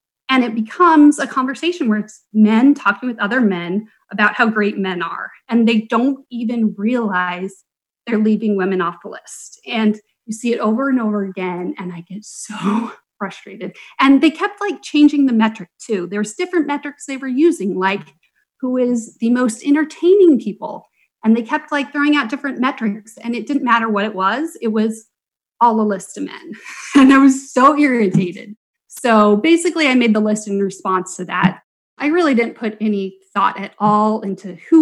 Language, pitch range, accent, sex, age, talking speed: English, 200-270 Hz, American, female, 30-49, 190 wpm